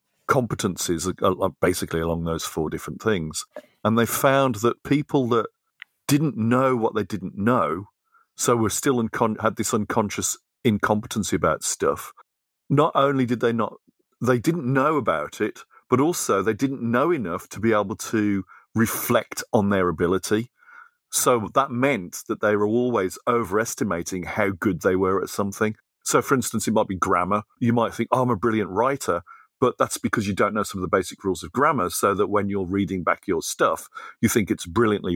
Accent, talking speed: British, 185 wpm